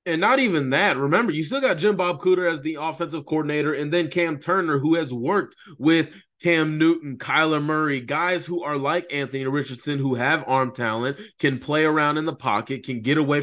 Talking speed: 205 wpm